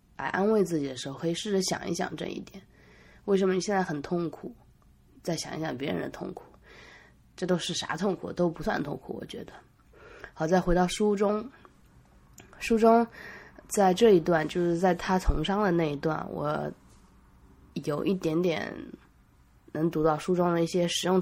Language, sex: Chinese, female